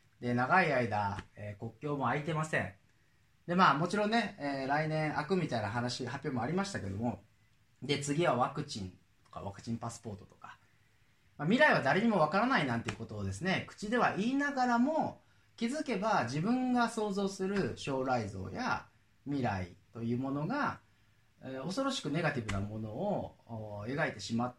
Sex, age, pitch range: male, 30-49, 105-160 Hz